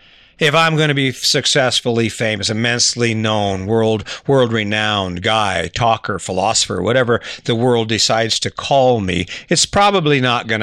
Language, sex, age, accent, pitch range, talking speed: English, male, 50-69, American, 115-145 Hz, 150 wpm